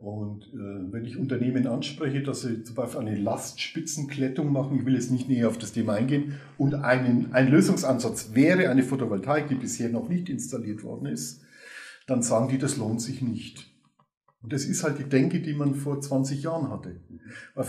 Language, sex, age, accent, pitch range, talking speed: German, male, 50-69, German, 120-150 Hz, 190 wpm